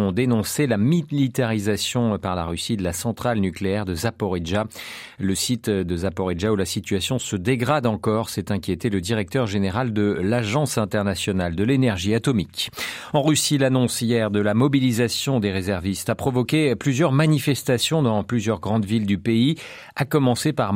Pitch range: 100-130 Hz